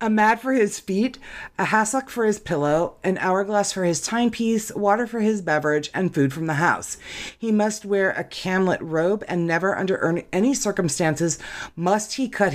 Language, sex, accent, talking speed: English, female, American, 180 wpm